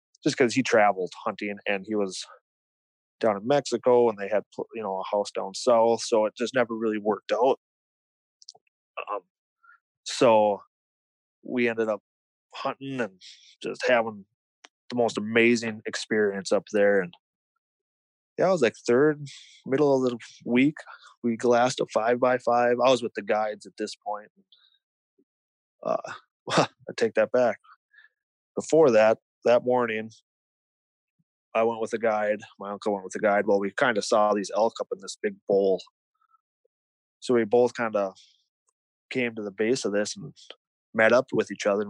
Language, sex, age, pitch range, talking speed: English, male, 20-39, 105-125 Hz, 170 wpm